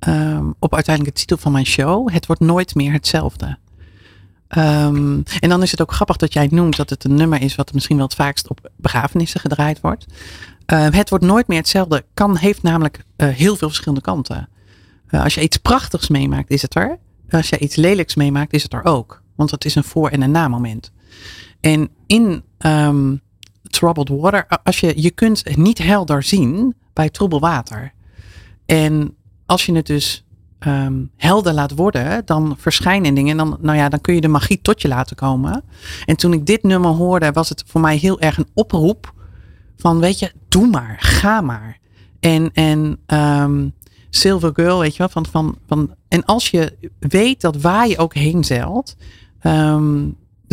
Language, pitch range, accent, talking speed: Dutch, 125-170 Hz, Dutch, 190 wpm